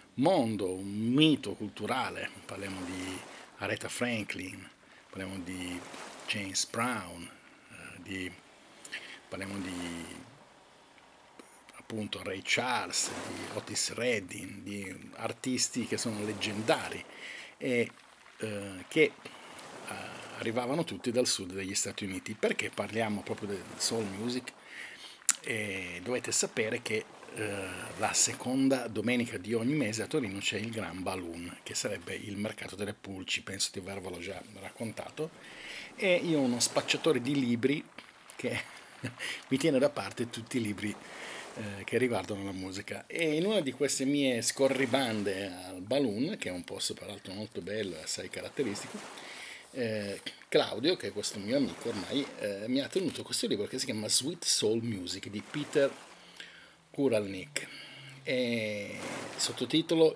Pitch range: 95-125 Hz